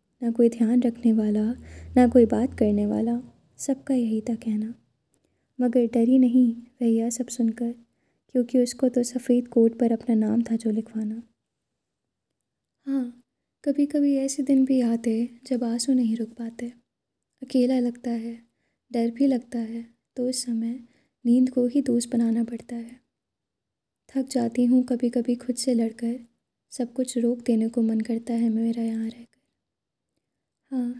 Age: 10-29